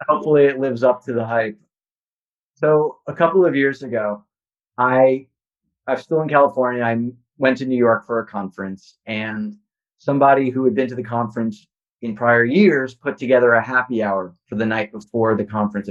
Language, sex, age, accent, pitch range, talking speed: English, male, 30-49, American, 105-130 Hz, 180 wpm